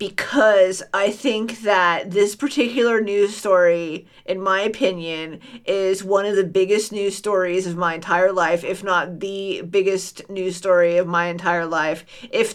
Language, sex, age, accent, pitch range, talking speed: English, female, 40-59, American, 185-230 Hz, 160 wpm